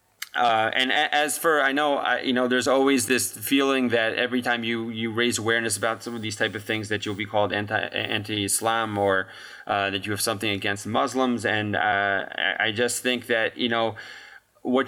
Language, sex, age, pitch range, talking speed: English, male, 20-39, 105-125 Hz, 205 wpm